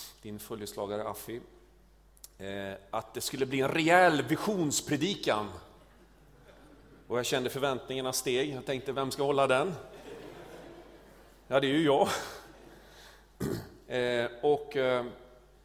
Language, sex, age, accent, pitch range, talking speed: Swedish, male, 40-59, native, 120-155 Hz, 100 wpm